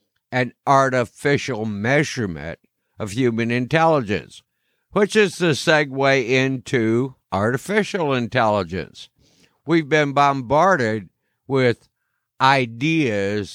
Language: English